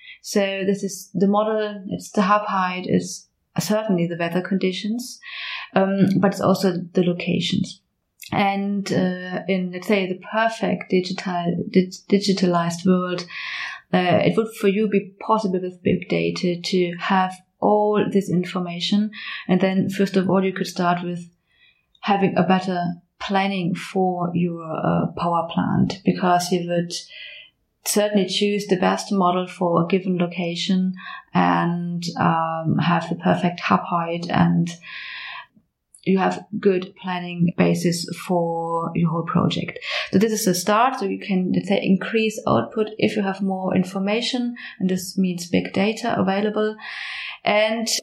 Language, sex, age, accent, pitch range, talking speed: English, female, 30-49, German, 175-205 Hz, 140 wpm